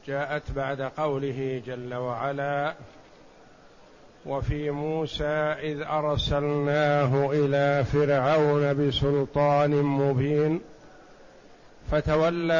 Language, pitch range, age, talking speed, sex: Arabic, 140-155 Hz, 50-69, 65 wpm, male